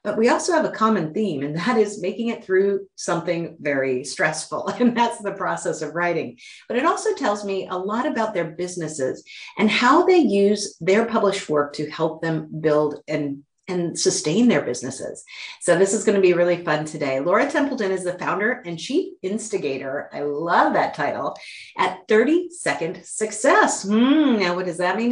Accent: American